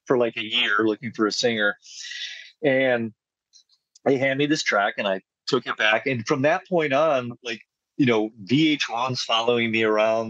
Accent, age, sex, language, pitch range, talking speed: American, 40-59, male, English, 110-155 Hz, 180 wpm